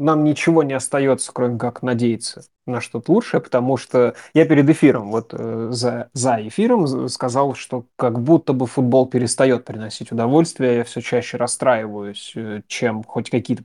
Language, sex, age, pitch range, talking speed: Russian, male, 20-39, 120-135 Hz, 155 wpm